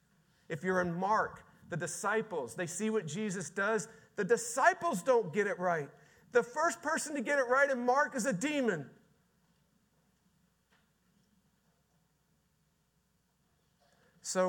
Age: 40-59